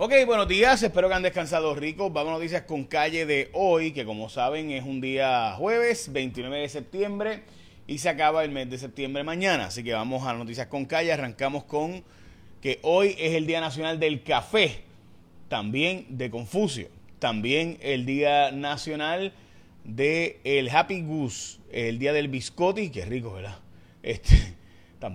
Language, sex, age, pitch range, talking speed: Spanish, male, 30-49, 120-160 Hz, 170 wpm